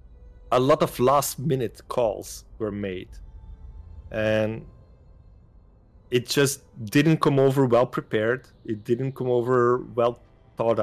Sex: male